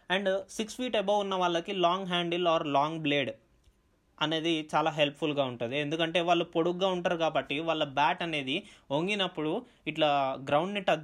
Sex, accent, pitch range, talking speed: male, native, 135-180 Hz, 145 wpm